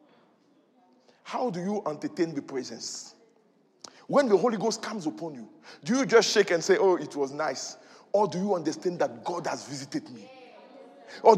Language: English